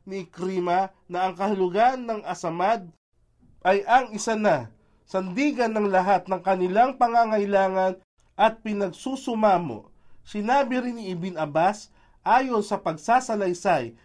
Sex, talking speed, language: male, 115 wpm, Filipino